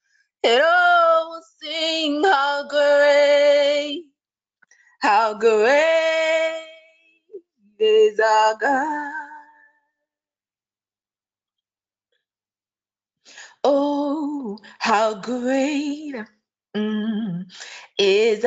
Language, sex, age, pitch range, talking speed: English, female, 20-39, 250-310 Hz, 45 wpm